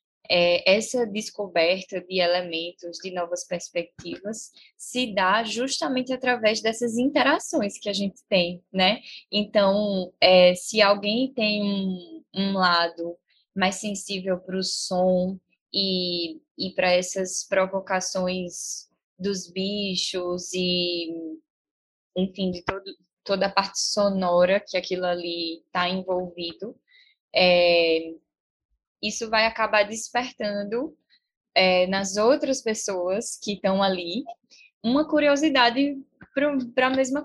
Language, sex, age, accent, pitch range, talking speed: Portuguese, female, 10-29, Brazilian, 180-225 Hz, 105 wpm